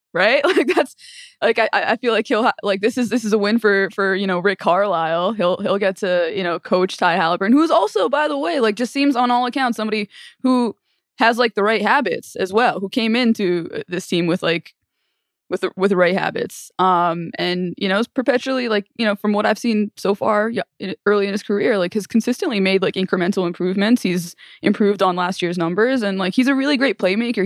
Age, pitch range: 20-39, 190-245 Hz